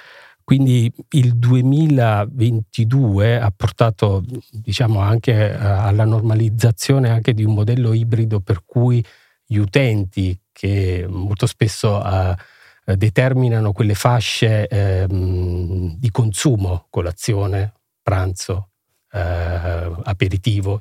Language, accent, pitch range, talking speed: Italian, native, 100-120 Hz, 90 wpm